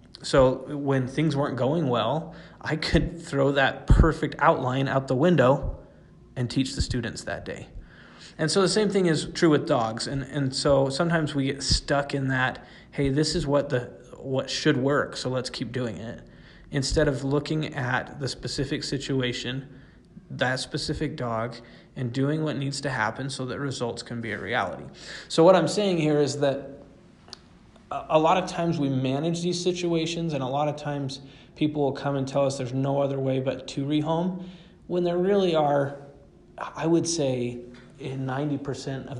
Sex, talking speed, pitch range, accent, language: male, 180 wpm, 130-155 Hz, American, English